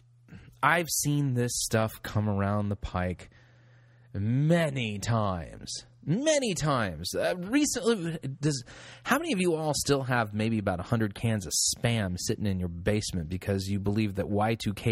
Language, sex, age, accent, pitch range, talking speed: English, male, 30-49, American, 115-165 Hz, 150 wpm